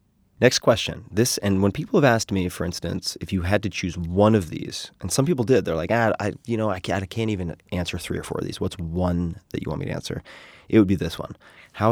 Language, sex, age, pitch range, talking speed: English, male, 30-49, 85-105 Hz, 270 wpm